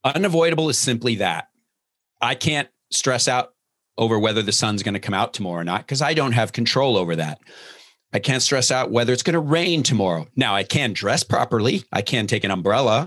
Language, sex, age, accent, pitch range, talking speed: English, male, 40-59, American, 95-125 Hz, 210 wpm